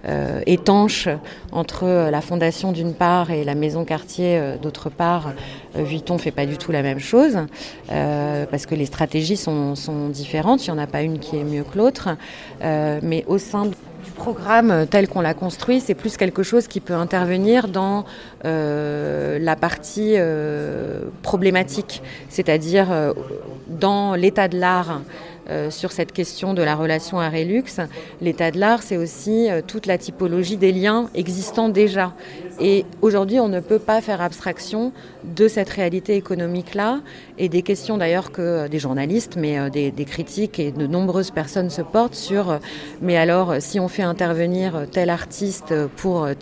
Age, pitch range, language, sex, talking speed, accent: 30-49, 155-195 Hz, French, female, 180 wpm, French